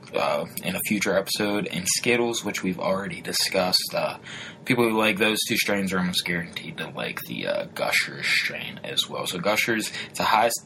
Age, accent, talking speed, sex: 20-39, American, 190 wpm, male